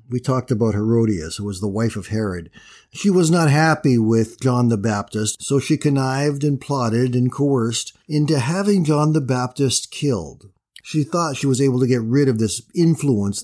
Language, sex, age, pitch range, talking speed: English, male, 50-69, 115-155 Hz, 190 wpm